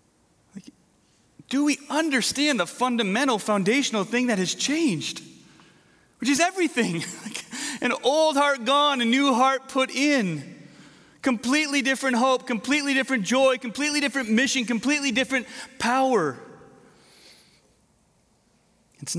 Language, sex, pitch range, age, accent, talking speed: English, male, 170-245 Hz, 30-49, American, 110 wpm